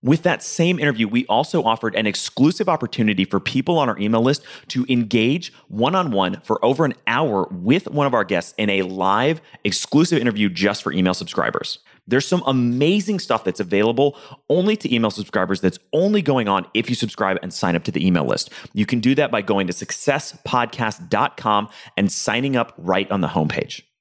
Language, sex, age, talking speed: English, male, 30-49, 190 wpm